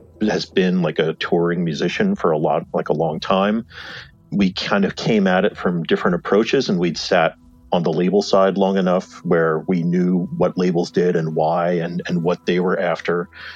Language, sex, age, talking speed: English, male, 40-59, 200 wpm